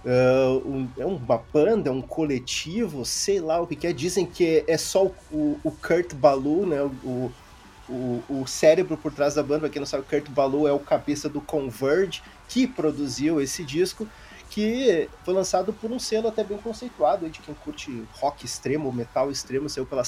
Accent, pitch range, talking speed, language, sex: Brazilian, 145-200 Hz, 200 wpm, Portuguese, male